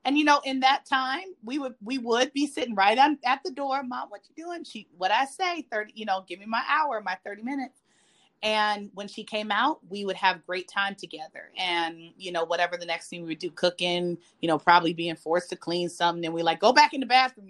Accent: American